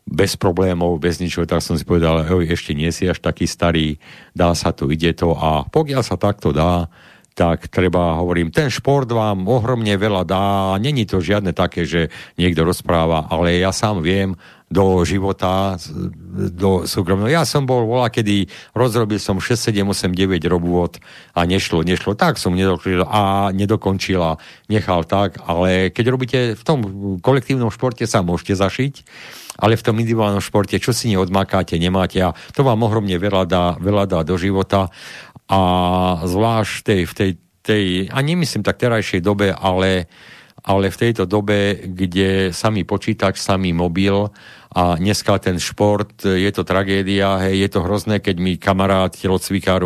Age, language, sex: 50-69, Slovak, male